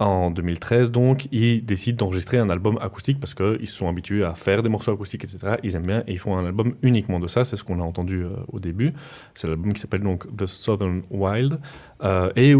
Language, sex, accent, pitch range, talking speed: French, male, French, 90-115 Hz, 235 wpm